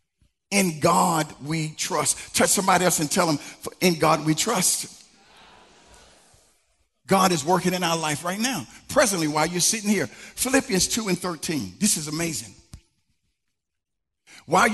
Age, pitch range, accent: 50-69, 185-245 Hz, American